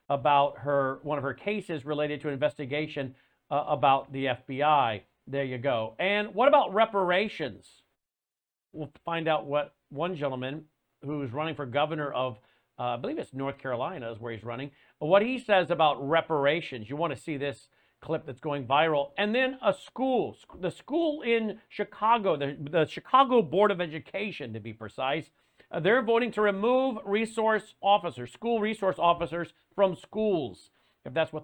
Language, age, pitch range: English, 50-69, 145-195 Hz